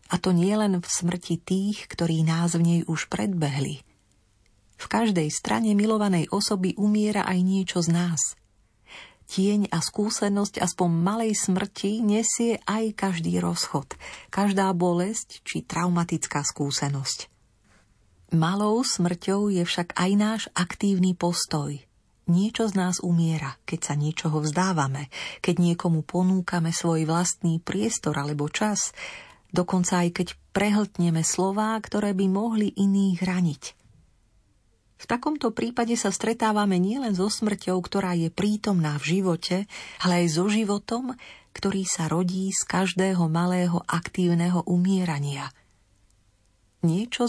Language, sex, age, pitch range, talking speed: Slovak, female, 40-59, 160-205 Hz, 125 wpm